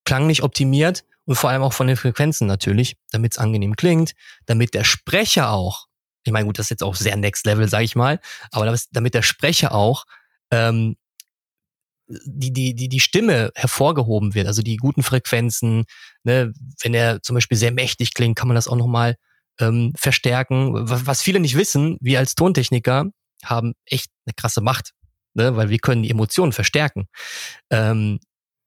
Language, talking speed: German, 180 wpm